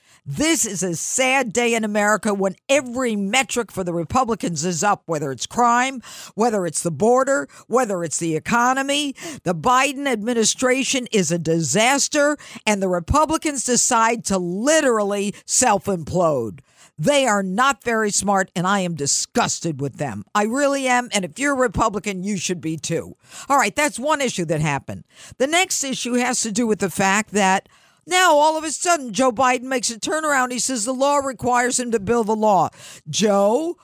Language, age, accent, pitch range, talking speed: English, 50-69, American, 185-265 Hz, 175 wpm